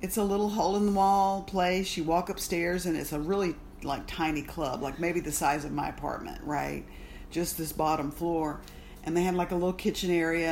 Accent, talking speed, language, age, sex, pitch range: American, 215 wpm, English, 50-69, female, 150-185 Hz